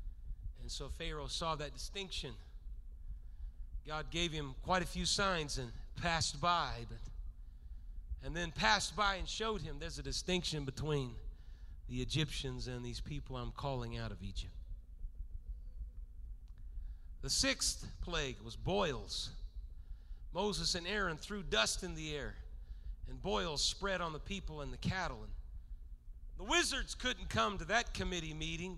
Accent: American